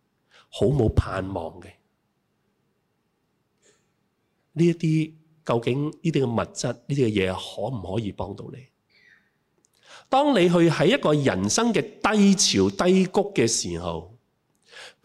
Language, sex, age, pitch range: Chinese, male, 30-49, 105-160 Hz